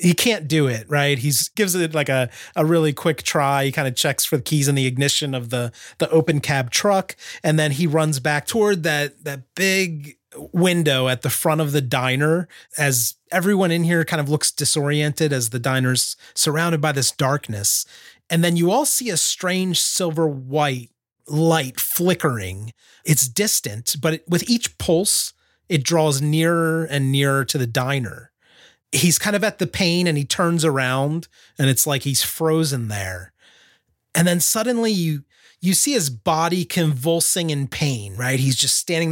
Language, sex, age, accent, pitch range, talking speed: English, male, 30-49, American, 135-175 Hz, 180 wpm